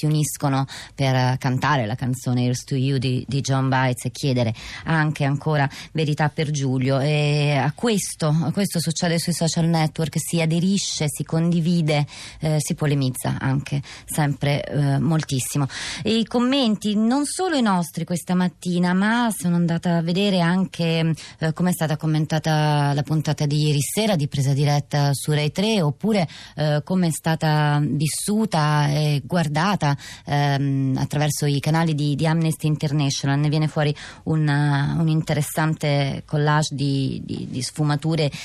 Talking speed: 150 wpm